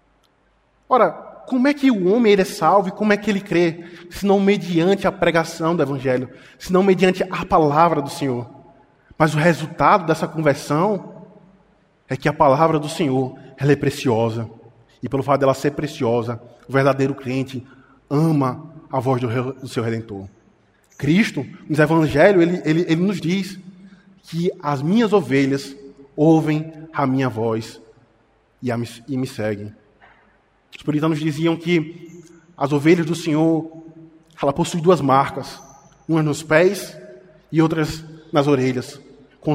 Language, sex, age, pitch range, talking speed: Portuguese, male, 20-39, 130-170 Hz, 155 wpm